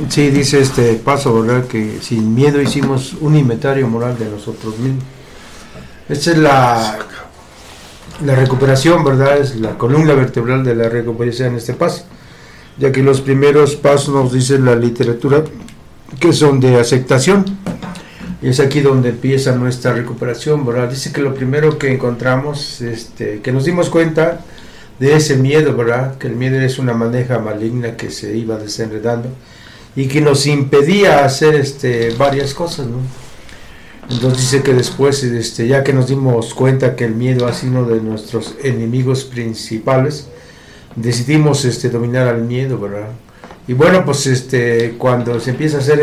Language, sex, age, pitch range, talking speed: Spanish, male, 60-79, 120-140 Hz, 160 wpm